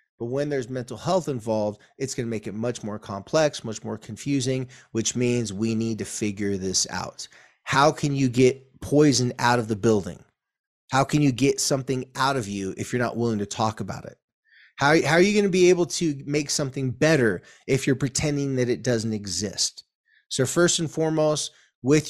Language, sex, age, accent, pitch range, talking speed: English, male, 30-49, American, 115-140 Hz, 200 wpm